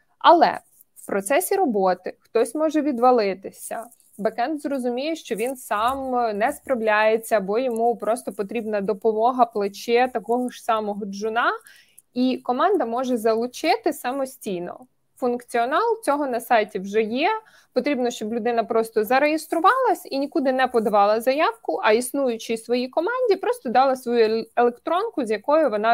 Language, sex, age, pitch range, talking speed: Ukrainian, female, 20-39, 220-270 Hz, 130 wpm